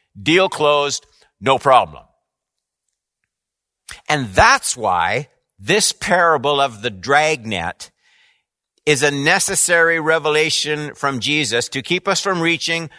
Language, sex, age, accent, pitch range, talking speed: English, male, 50-69, American, 130-170 Hz, 105 wpm